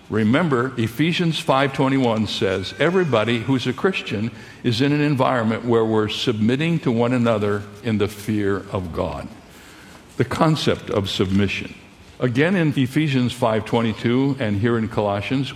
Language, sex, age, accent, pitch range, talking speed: English, male, 60-79, American, 110-140 Hz, 135 wpm